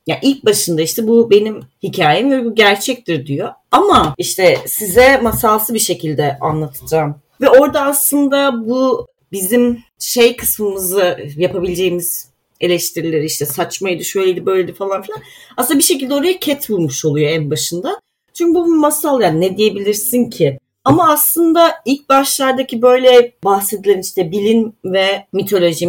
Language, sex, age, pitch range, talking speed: Turkish, female, 30-49, 165-250 Hz, 135 wpm